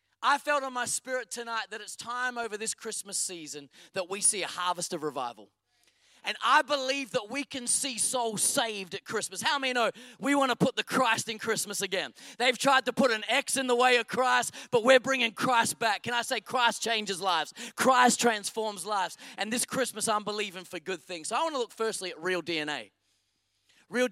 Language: English